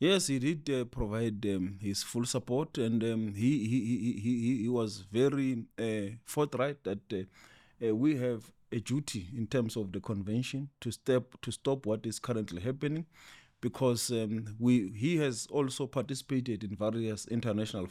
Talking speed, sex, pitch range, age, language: 165 wpm, male, 105-125 Hz, 30-49, English